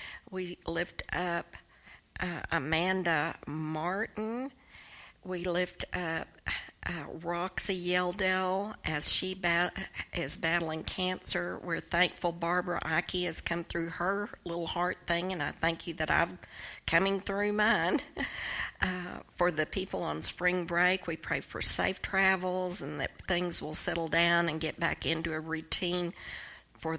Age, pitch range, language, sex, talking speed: 50-69, 165-190 Hz, English, female, 140 wpm